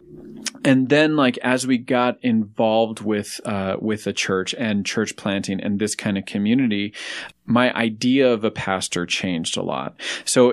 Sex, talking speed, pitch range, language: male, 165 wpm, 100-120 Hz, English